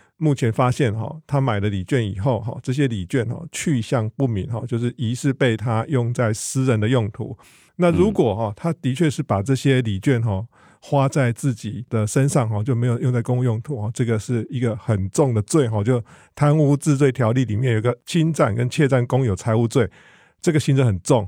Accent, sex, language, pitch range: American, male, Chinese, 115-135 Hz